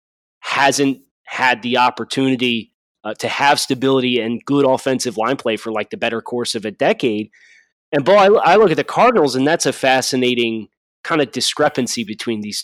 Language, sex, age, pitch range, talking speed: English, male, 20-39, 115-140 Hz, 180 wpm